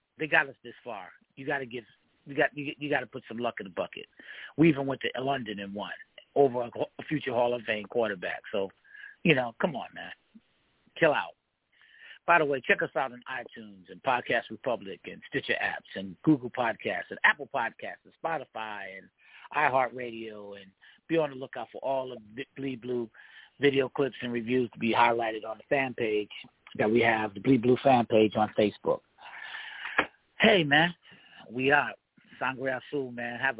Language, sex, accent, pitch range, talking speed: English, male, American, 115-150 Hz, 195 wpm